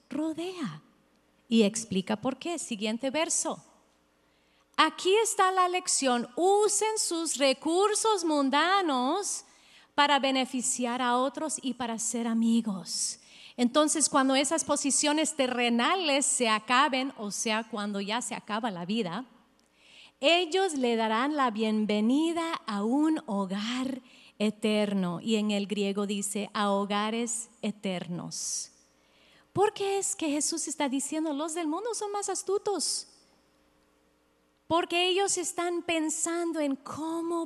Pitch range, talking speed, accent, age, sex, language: 210-310 Hz, 120 wpm, American, 40-59, female, English